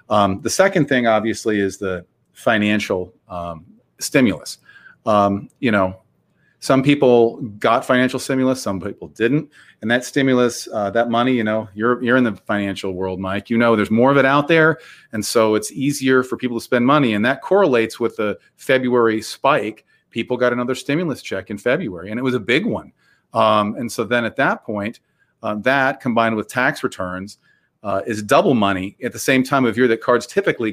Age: 40-59